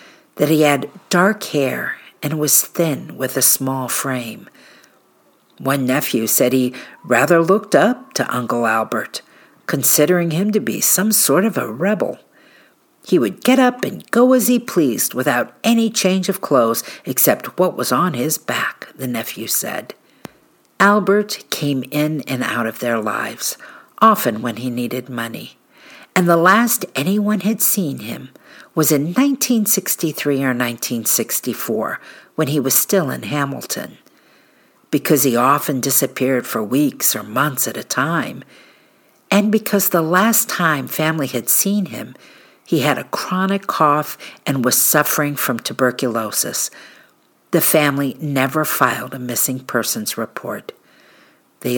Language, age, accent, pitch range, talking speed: English, 50-69, American, 130-195 Hz, 145 wpm